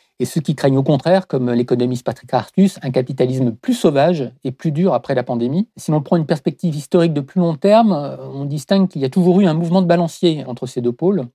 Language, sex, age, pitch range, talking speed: French, male, 50-69, 130-160 Hz, 240 wpm